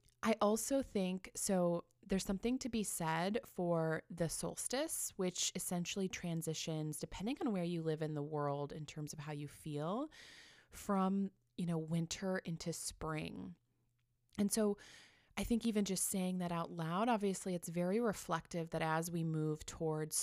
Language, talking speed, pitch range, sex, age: English, 160 wpm, 160-205 Hz, female, 20-39